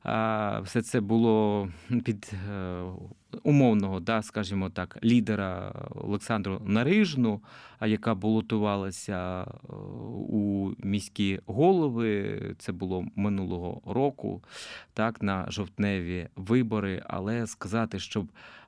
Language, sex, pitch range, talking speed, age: Ukrainian, male, 95-115 Hz, 85 wpm, 30-49